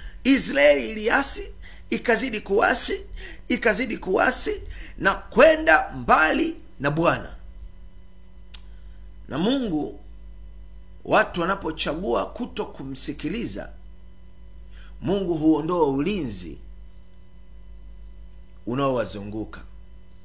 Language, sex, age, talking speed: Swahili, male, 50-69, 55 wpm